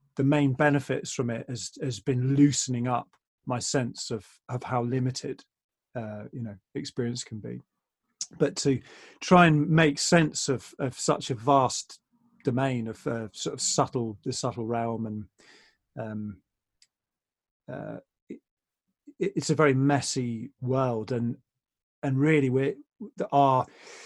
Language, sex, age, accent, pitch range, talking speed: English, male, 40-59, British, 120-150 Hz, 140 wpm